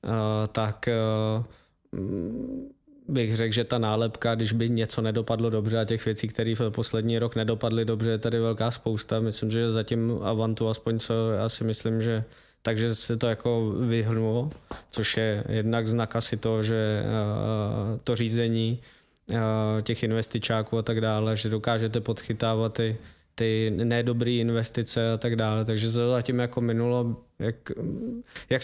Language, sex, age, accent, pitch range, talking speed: Czech, male, 20-39, native, 110-120 Hz, 155 wpm